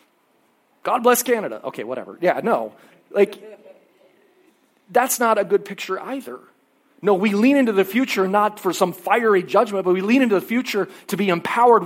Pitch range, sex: 185-245 Hz, male